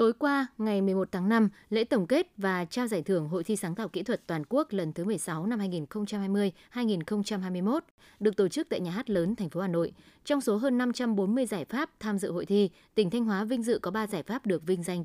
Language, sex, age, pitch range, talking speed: Vietnamese, female, 20-39, 180-230 Hz, 235 wpm